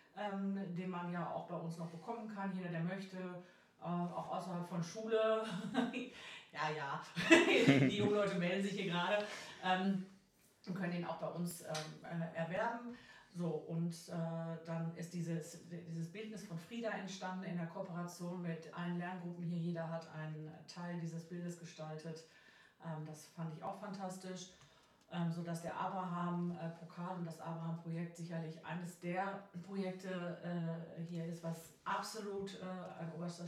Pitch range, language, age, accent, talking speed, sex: 170-195 Hz, German, 40-59, German, 145 wpm, female